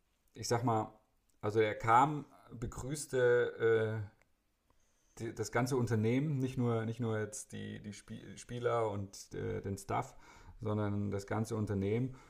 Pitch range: 100-115 Hz